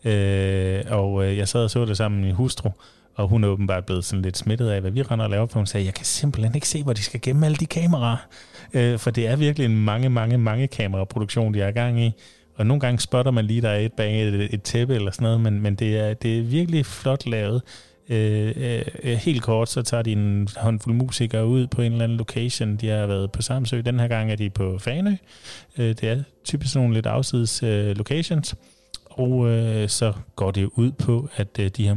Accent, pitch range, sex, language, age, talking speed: native, 100-125 Hz, male, Danish, 30-49, 245 wpm